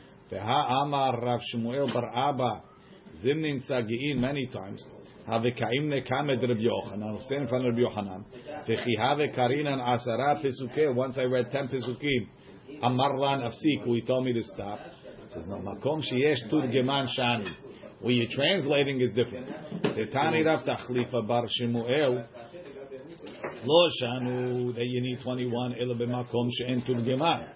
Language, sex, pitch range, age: English, male, 120-150 Hz, 50-69